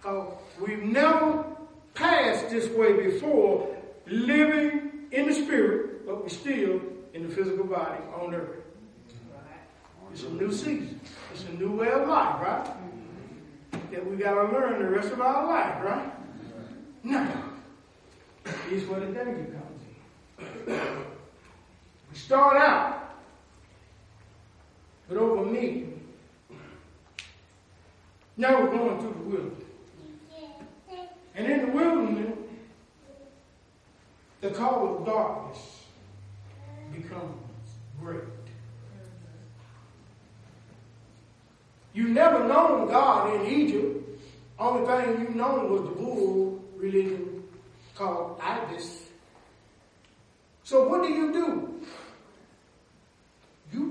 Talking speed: 105 wpm